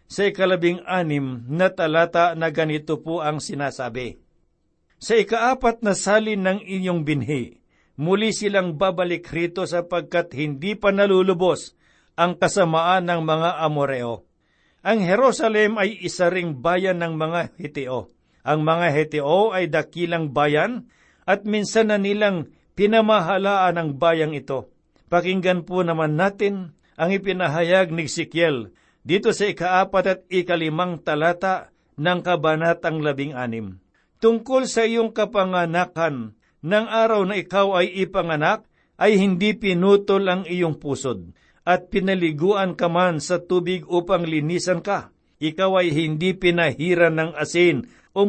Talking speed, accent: 130 wpm, native